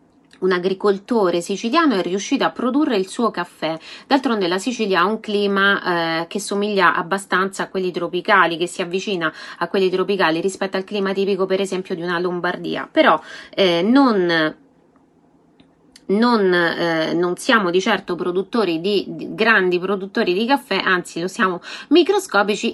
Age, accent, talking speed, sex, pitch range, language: 20-39, native, 155 wpm, female, 180-230 Hz, Italian